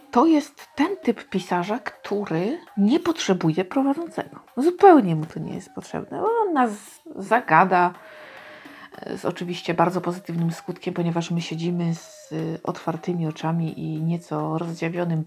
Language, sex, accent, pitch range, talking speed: Polish, female, native, 165-215 Hz, 130 wpm